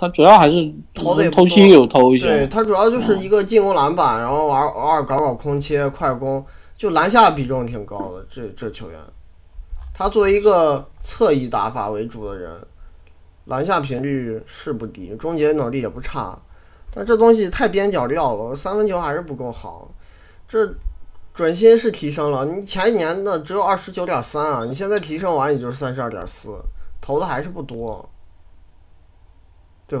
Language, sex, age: Chinese, male, 20-39